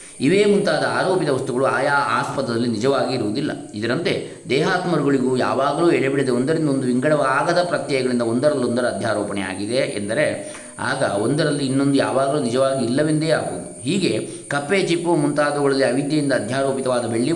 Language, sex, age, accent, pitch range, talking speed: Kannada, male, 20-39, native, 115-145 Hz, 110 wpm